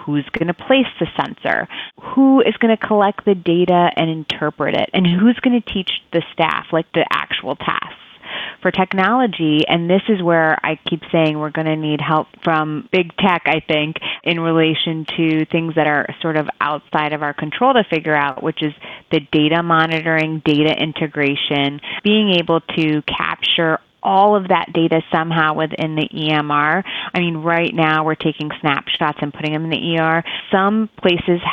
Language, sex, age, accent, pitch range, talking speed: English, female, 30-49, American, 155-195 Hz, 180 wpm